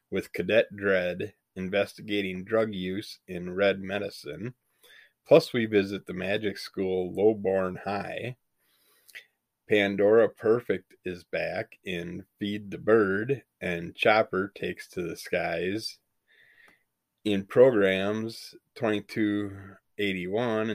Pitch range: 95-110 Hz